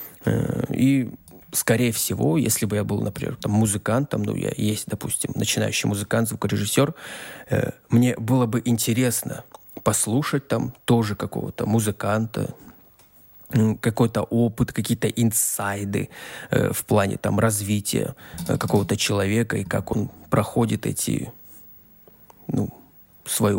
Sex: male